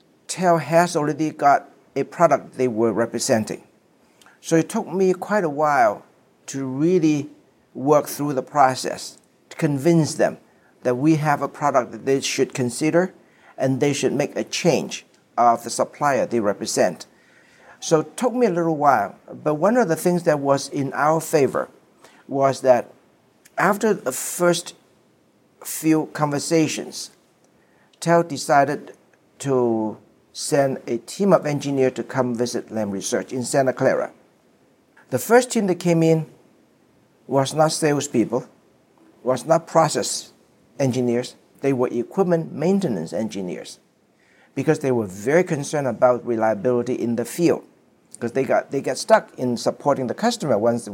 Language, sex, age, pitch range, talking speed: English, male, 60-79, 125-165 Hz, 145 wpm